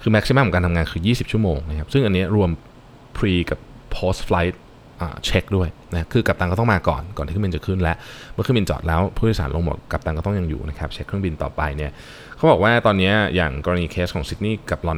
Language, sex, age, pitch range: Thai, male, 20-39, 80-105 Hz